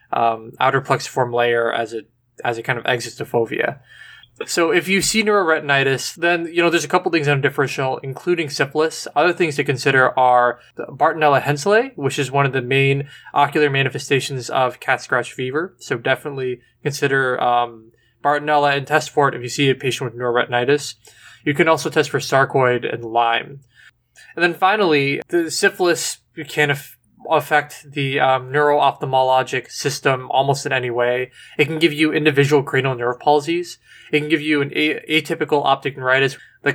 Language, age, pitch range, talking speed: English, 20-39, 130-150 Hz, 175 wpm